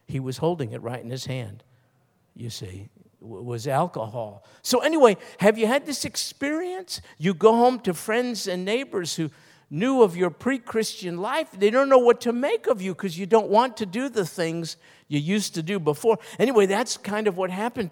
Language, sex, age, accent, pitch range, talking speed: English, male, 50-69, American, 145-210 Hz, 200 wpm